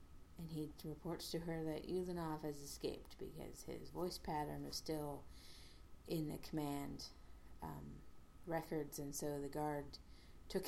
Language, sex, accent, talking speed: English, female, American, 140 wpm